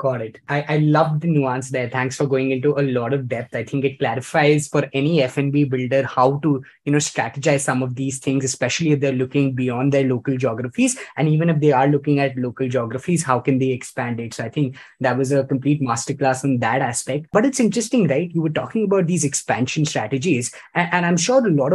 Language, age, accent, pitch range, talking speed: English, 20-39, Indian, 135-160 Hz, 230 wpm